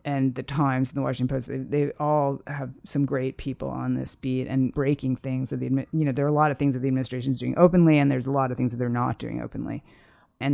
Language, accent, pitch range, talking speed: English, American, 130-145 Hz, 275 wpm